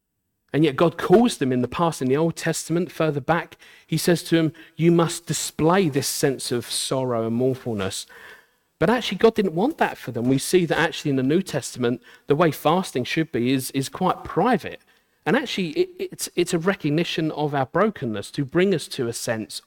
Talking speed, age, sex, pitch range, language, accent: 205 wpm, 40-59, male, 125-170 Hz, English, British